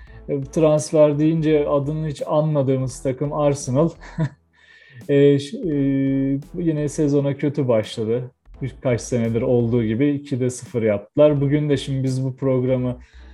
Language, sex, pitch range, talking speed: Turkish, male, 135-165 Hz, 115 wpm